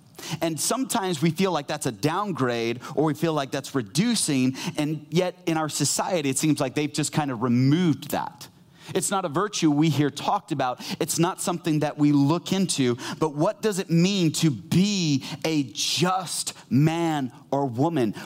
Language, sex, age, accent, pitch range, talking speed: English, male, 30-49, American, 140-170 Hz, 180 wpm